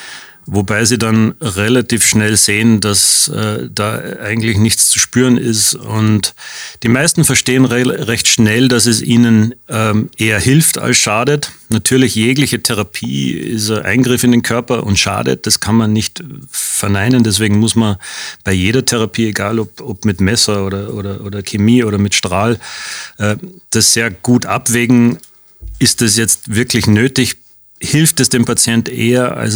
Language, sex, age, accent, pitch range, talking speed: German, male, 30-49, German, 105-120 Hz, 155 wpm